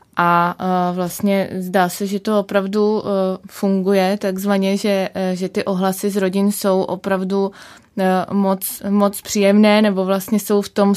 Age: 20-39